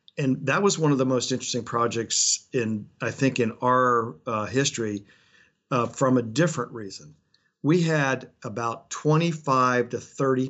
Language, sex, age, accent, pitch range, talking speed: English, male, 50-69, American, 120-145 Hz, 155 wpm